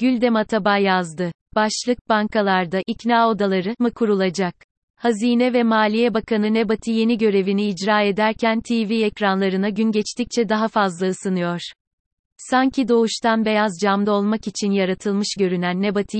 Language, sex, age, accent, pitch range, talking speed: Turkish, female, 30-49, native, 195-220 Hz, 125 wpm